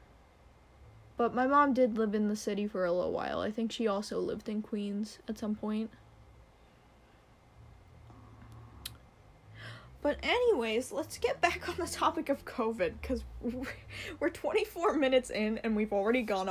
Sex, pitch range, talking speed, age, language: female, 175-235 Hz, 150 wpm, 10-29, English